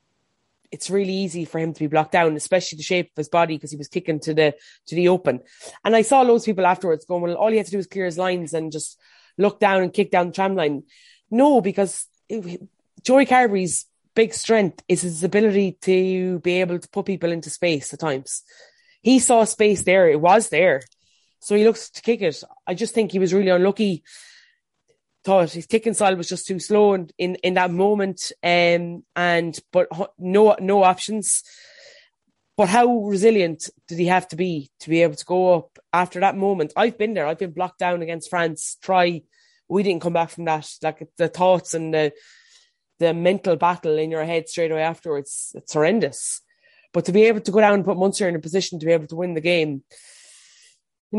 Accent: Irish